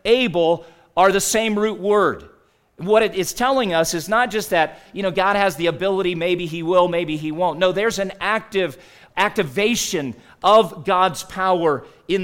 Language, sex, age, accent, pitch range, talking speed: English, male, 40-59, American, 165-200 Hz, 175 wpm